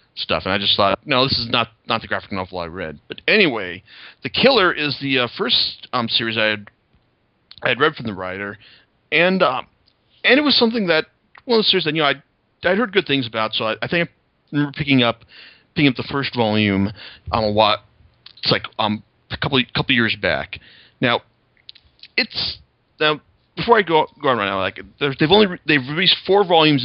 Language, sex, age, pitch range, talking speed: English, male, 30-49, 110-150 Hz, 215 wpm